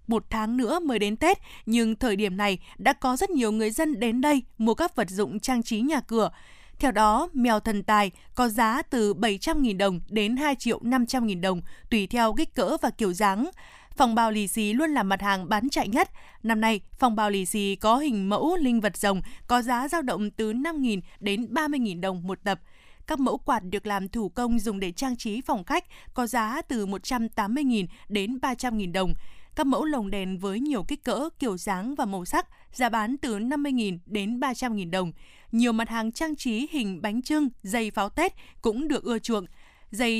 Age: 20-39